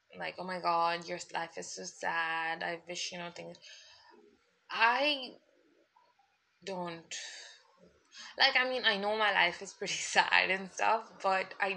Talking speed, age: 155 wpm, 20-39